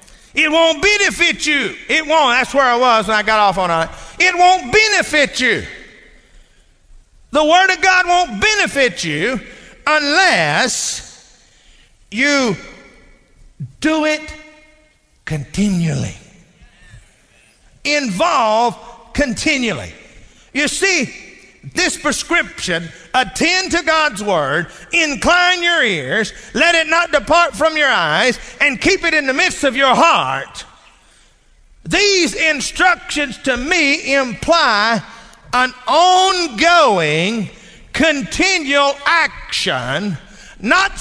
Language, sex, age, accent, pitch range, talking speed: English, male, 50-69, American, 245-325 Hz, 105 wpm